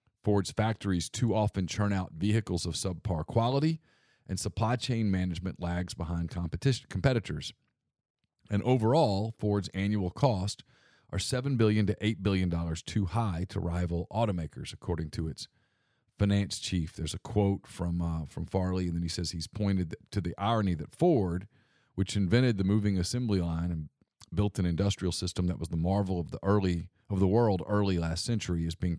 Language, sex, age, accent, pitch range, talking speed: English, male, 40-59, American, 85-110 Hz, 175 wpm